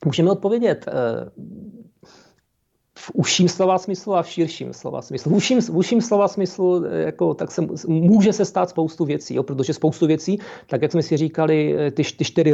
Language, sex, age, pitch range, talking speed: Czech, male, 40-59, 145-175 Hz, 165 wpm